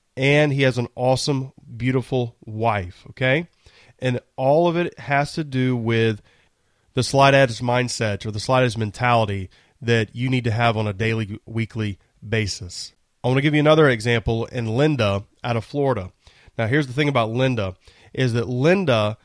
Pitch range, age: 115-140 Hz, 30-49